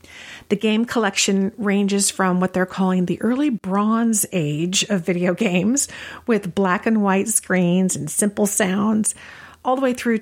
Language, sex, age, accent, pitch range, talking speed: English, female, 50-69, American, 175-220 Hz, 160 wpm